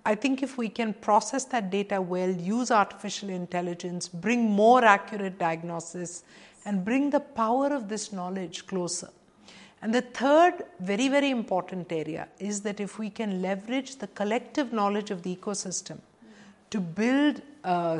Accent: Indian